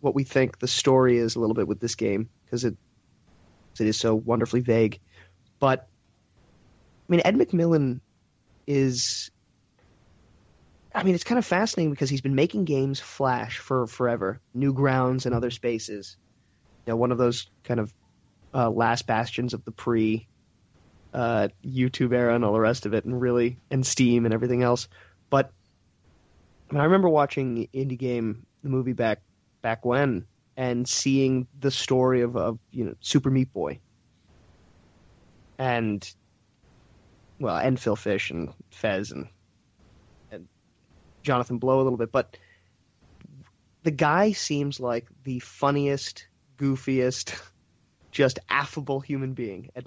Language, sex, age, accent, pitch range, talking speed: English, male, 30-49, American, 110-135 Hz, 150 wpm